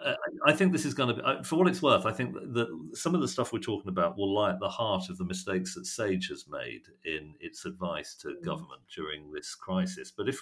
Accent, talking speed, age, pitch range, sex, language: British, 250 wpm, 50-69, 95-135 Hz, male, English